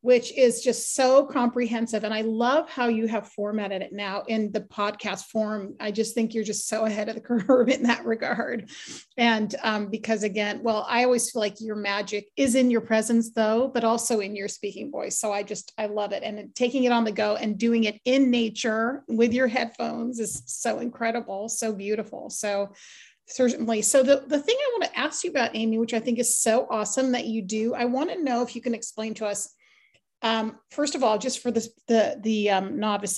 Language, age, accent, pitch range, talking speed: English, 30-49, American, 215-250 Hz, 220 wpm